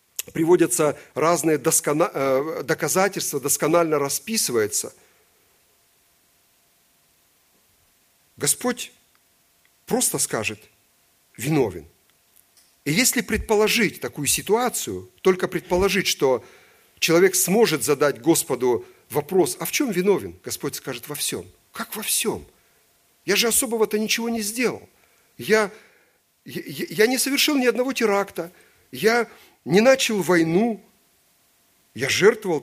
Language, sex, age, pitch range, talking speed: Russian, male, 50-69, 160-220 Hz, 95 wpm